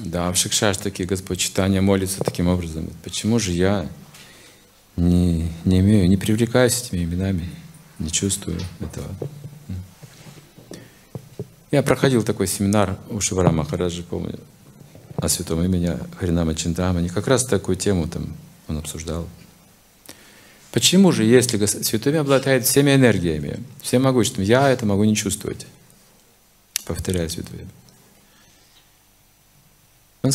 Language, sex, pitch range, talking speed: Russian, male, 95-135 Hz, 120 wpm